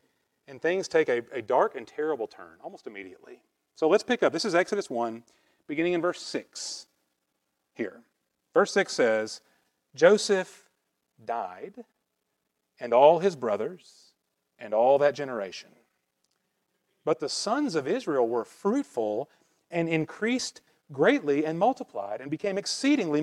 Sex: male